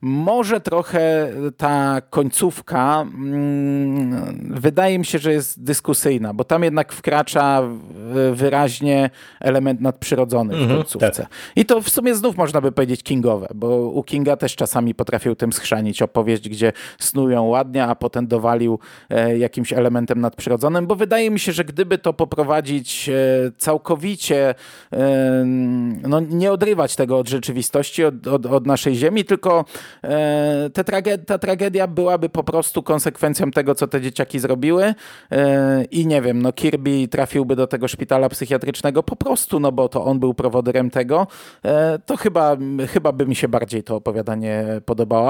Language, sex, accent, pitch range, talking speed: Polish, male, native, 125-155 Hz, 150 wpm